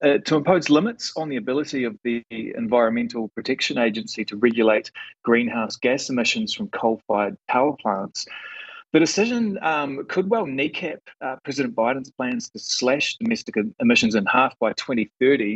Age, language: 30-49, English